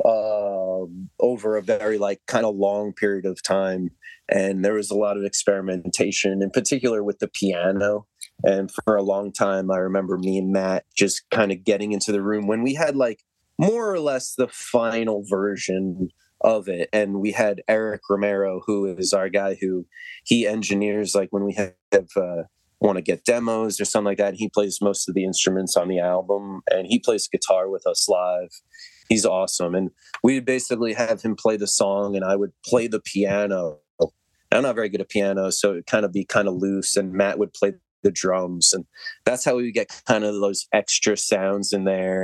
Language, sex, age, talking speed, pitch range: English, male, 30-49, 205 wpm, 95-115 Hz